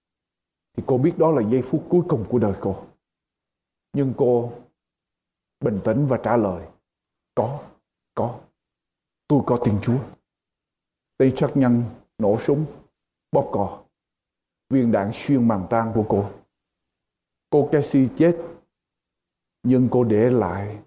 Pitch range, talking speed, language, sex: 105-140 Hz, 130 wpm, Spanish, male